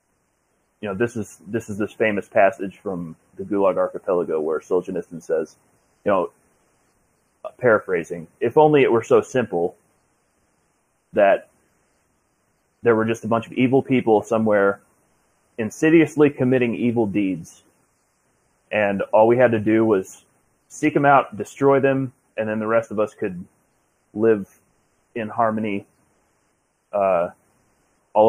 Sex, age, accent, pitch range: male, 30-49, American, 100-120 Hz